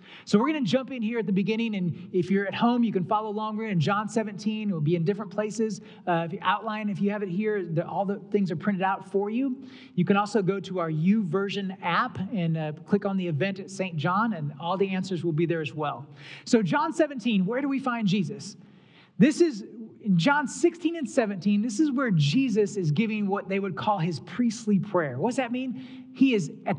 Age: 30-49